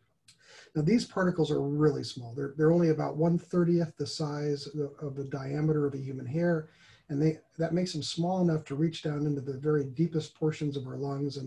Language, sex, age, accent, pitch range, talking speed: English, male, 40-59, American, 140-155 Hz, 215 wpm